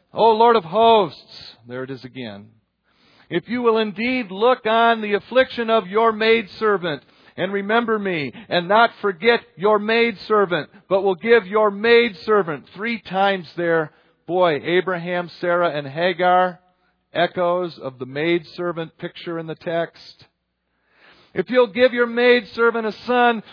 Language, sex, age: English, male, 50-69